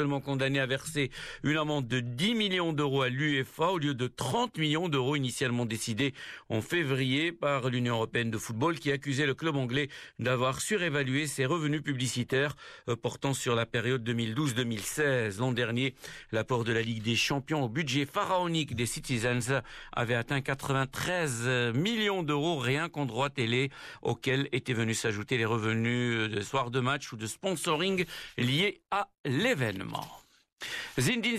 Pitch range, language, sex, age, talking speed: 120-155 Hz, Arabic, male, 60-79, 155 wpm